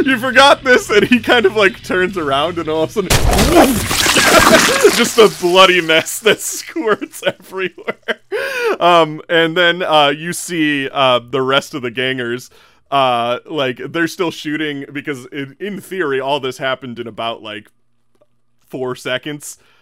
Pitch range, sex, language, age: 125-185 Hz, male, English, 30-49